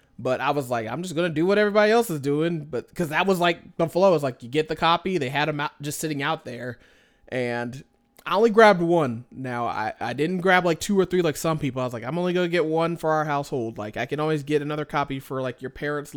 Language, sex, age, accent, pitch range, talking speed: English, male, 20-39, American, 130-170 Hz, 280 wpm